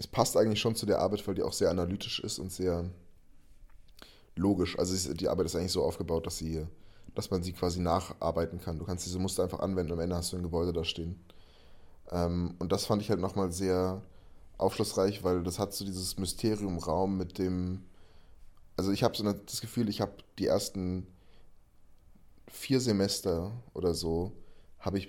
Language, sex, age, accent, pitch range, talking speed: German, male, 20-39, German, 85-100 Hz, 185 wpm